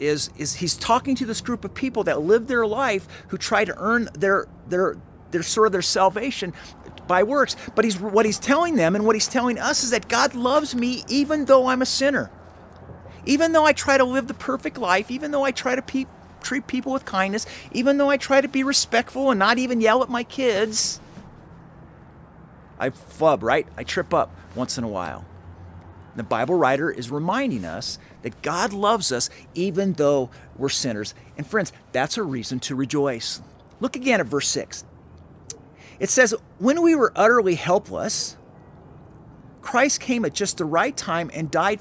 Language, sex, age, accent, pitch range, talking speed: English, male, 40-59, American, 180-265 Hz, 185 wpm